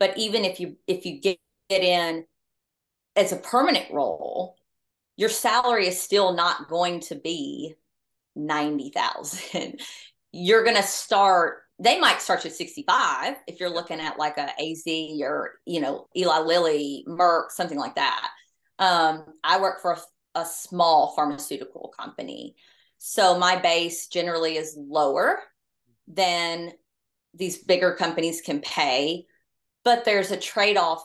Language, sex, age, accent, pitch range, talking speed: English, female, 30-49, American, 160-195 Hz, 145 wpm